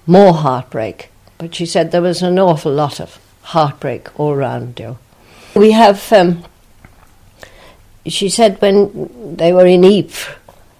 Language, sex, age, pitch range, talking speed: English, female, 60-79, 145-185 Hz, 140 wpm